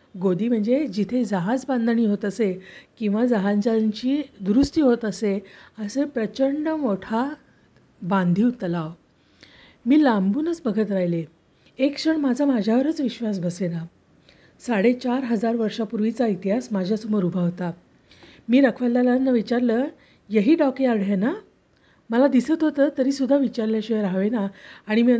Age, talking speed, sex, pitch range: 50-69, 115 wpm, female, 200-255 Hz